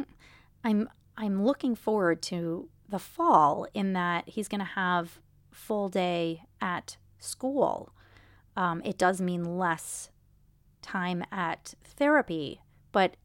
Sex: female